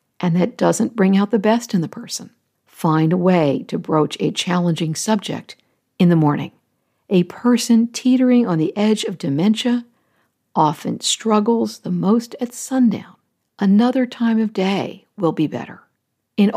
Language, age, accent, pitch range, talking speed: English, 60-79, American, 185-245 Hz, 155 wpm